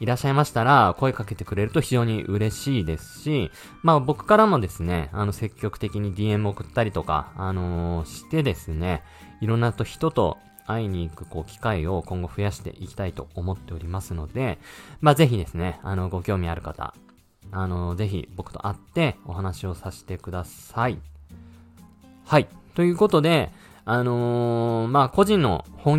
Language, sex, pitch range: Japanese, male, 90-130 Hz